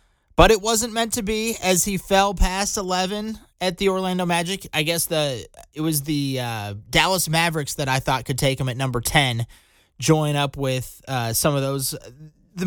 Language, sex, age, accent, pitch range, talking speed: English, male, 30-49, American, 135-185 Hz, 195 wpm